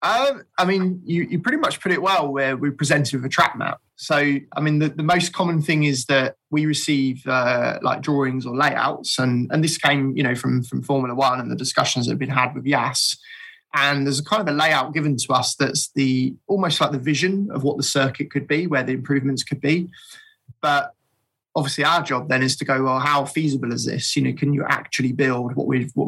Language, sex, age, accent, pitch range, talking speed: English, male, 20-39, British, 130-155 Hz, 235 wpm